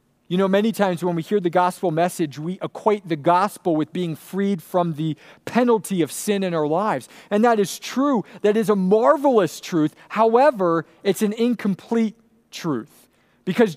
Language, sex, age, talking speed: English, male, 40-59, 175 wpm